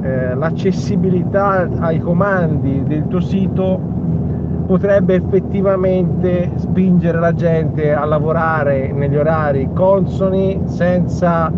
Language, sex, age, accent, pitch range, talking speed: Italian, male, 50-69, native, 155-185 Hz, 90 wpm